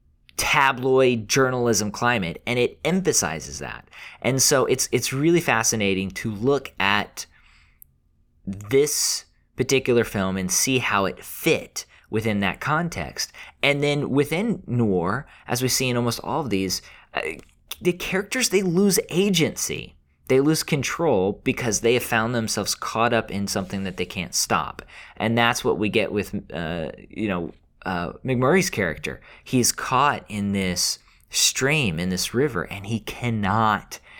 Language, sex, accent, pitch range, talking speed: English, male, American, 95-135 Hz, 145 wpm